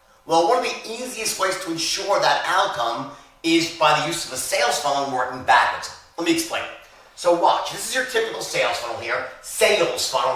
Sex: male